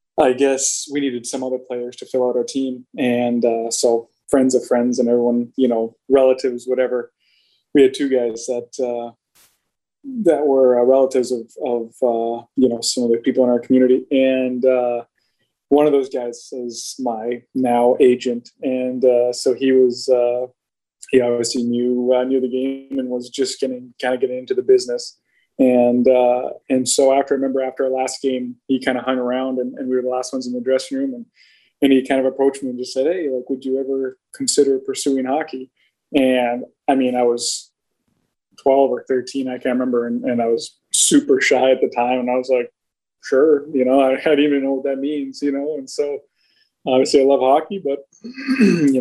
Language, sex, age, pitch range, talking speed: English, male, 20-39, 125-135 Hz, 205 wpm